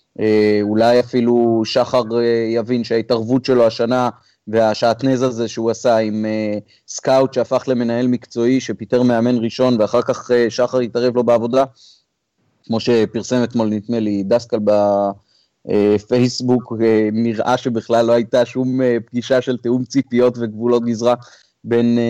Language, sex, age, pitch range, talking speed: Hebrew, male, 30-49, 110-125 Hz, 120 wpm